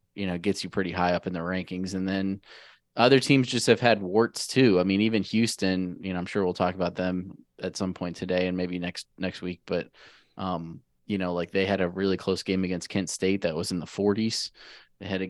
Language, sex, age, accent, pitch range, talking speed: English, male, 20-39, American, 90-105 Hz, 245 wpm